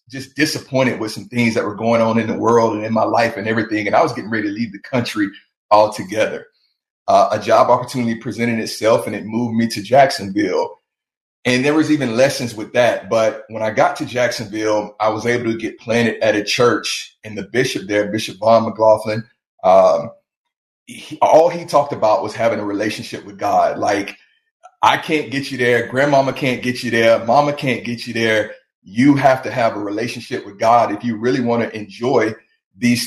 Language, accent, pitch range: English, American, 110-145 Hz